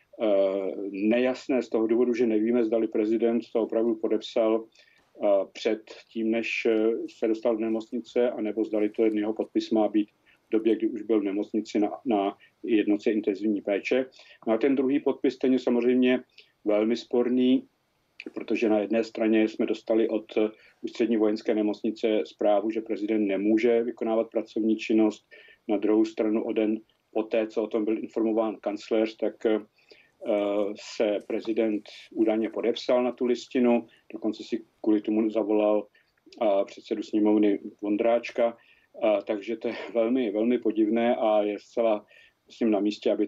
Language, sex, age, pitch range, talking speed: Czech, male, 50-69, 105-120 Hz, 145 wpm